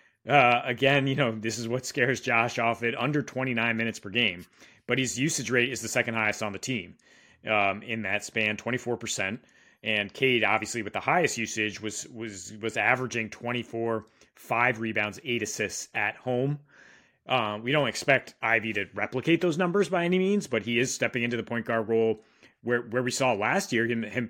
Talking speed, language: 200 wpm, English